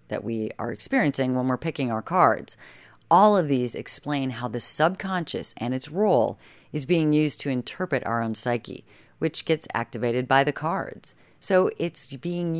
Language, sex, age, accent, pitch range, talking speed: English, female, 30-49, American, 125-165 Hz, 170 wpm